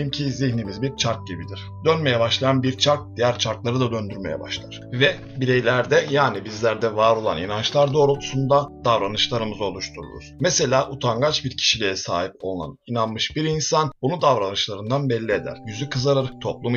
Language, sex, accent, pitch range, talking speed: Turkish, male, native, 110-140 Hz, 145 wpm